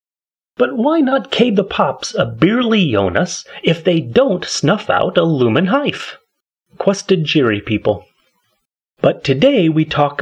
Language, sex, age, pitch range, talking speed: English, male, 30-49, 115-190 Hz, 140 wpm